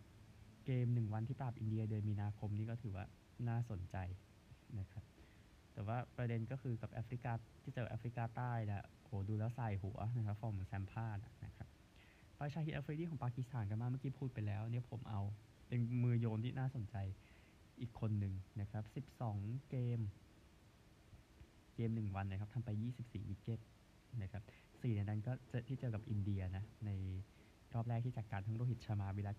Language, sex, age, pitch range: Thai, male, 20-39, 105-120 Hz